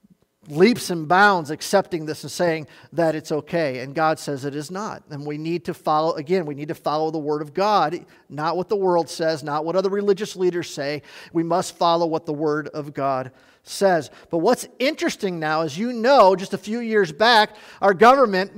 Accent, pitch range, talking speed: American, 180-230 Hz, 205 wpm